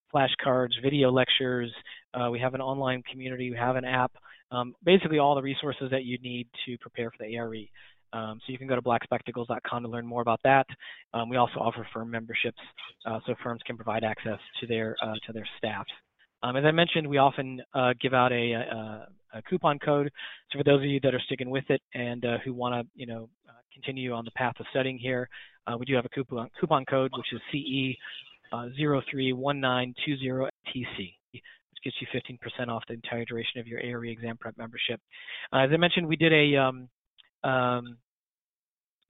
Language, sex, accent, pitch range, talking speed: English, male, American, 120-135 Hz, 205 wpm